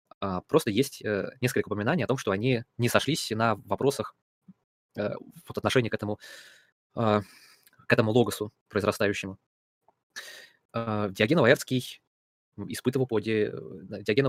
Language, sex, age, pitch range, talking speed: Russian, male, 20-39, 100-120 Hz, 90 wpm